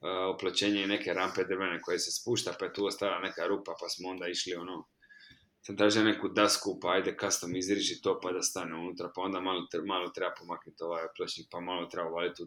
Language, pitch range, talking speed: Croatian, 100-125 Hz, 205 wpm